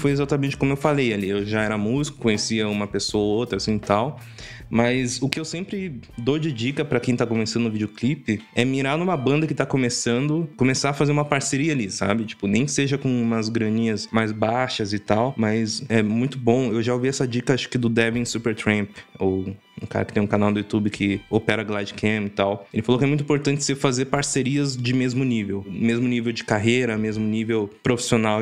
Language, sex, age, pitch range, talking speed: Portuguese, male, 20-39, 110-135 Hz, 215 wpm